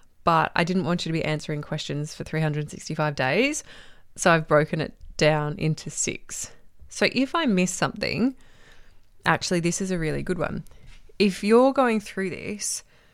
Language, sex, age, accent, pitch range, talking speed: English, female, 20-39, Australian, 145-190 Hz, 165 wpm